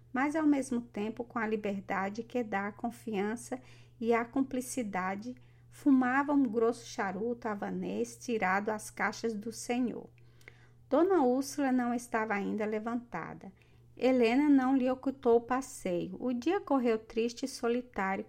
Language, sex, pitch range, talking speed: Portuguese, female, 205-255 Hz, 140 wpm